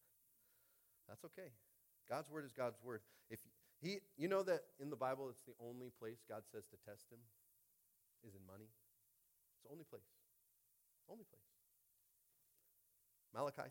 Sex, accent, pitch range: male, American, 115-165 Hz